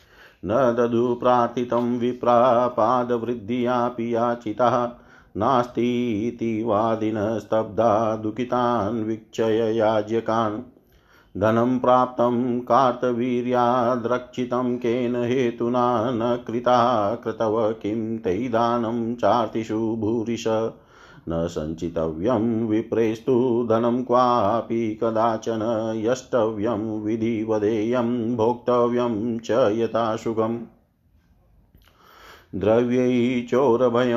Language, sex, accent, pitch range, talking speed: Hindi, male, native, 110-120 Hz, 50 wpm